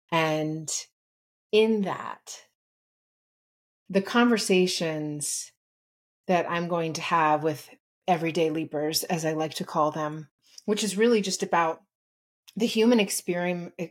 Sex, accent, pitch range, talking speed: female, American, 160-190 Hz, 115 wpm